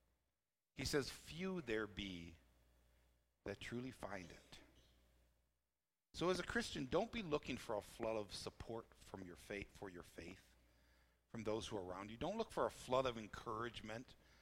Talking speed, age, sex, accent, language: 165 wpm, 50-69, male, American, English